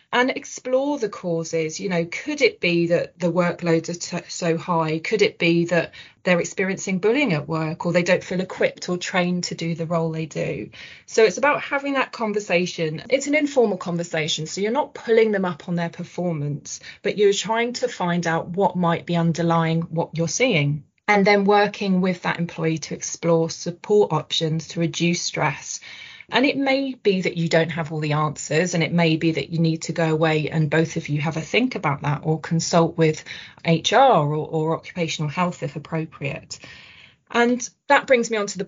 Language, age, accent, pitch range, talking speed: English, 20-39, British, 160-195 Hz, 200 wpm